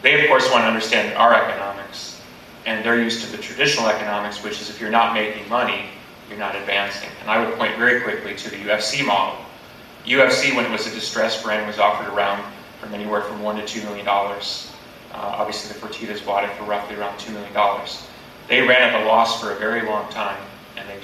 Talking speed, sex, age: 215 wpm, male, 30-49